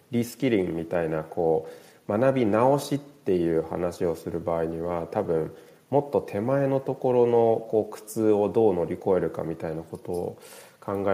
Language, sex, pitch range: Japanese, male, 100-155 Hz